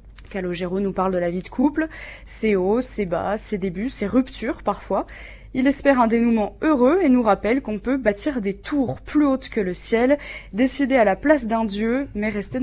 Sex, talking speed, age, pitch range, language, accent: female, 205 wpm, 20-39, 205-255 Hz, French, French